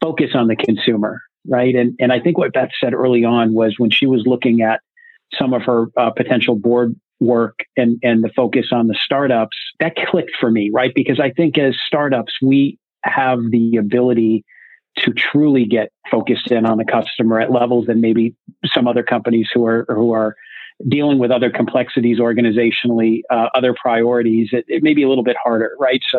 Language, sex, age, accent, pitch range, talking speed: English, male, 40-59, American, 115-125 Hz, 195 wpm